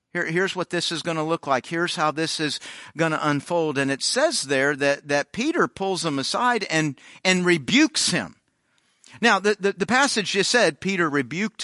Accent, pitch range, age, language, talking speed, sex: American, 145-195 Hz, 50-69, English, 195 wpm, male